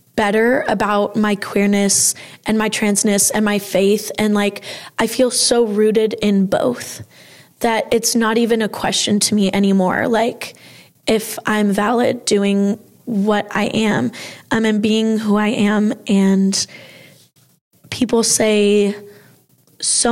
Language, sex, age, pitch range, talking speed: English, female, 20-39, 205-225 Hz, 135 wpm